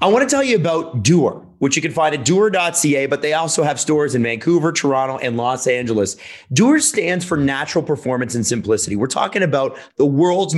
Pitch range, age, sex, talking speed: 130-165 Hz, 30-49, male, 205 wpm